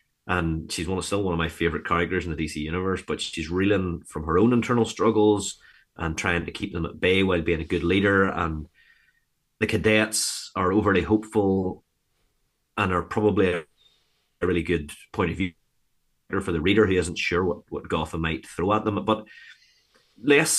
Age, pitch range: 30-49, 80-100 Hz